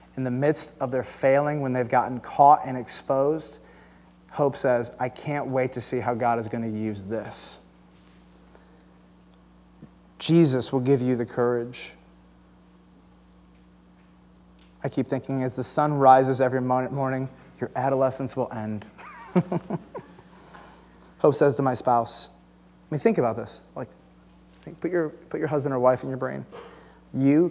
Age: 30-49